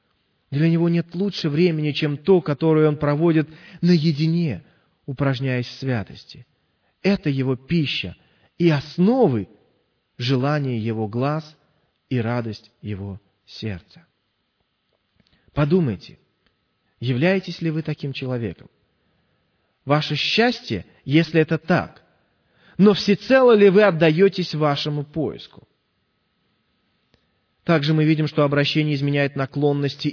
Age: 30-49